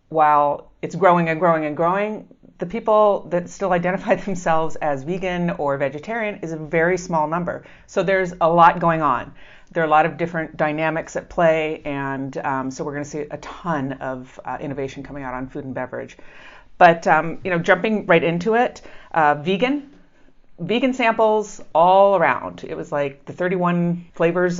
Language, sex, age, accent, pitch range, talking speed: English, female, 40-59, American, 145-180 Hz, 180 wpm